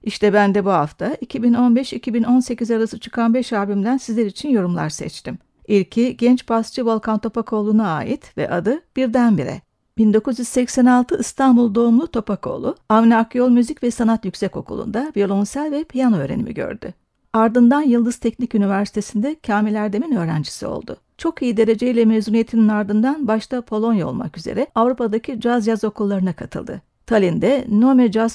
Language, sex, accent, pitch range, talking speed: Turkish, female, native, 210-250 Hz, 135 wpm